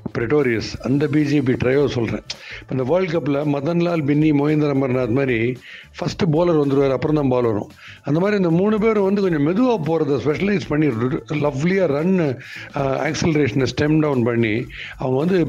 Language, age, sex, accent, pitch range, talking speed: Tamil, 60-79, male, native, 140-190 Hz, 135 wpm